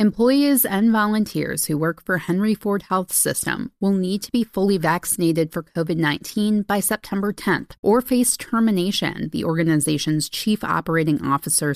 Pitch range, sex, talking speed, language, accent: 165-215 Hz, female, 155 wpm, English, American